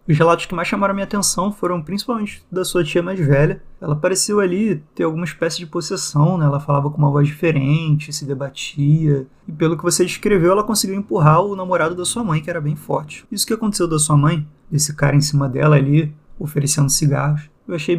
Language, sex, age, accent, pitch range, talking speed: Portuguese, male, 20-39, Brazilian, 150-180 Hz, 215 wpm